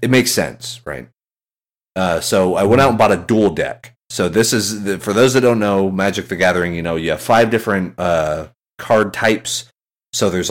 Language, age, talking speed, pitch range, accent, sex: English, 30-49, 205 wpm, 90-120 Hz, American, male